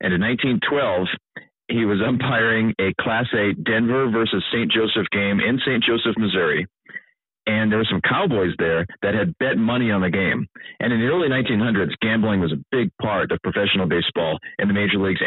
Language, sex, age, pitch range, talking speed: English, male, 40-59, 100-130 Hz, 190 wpm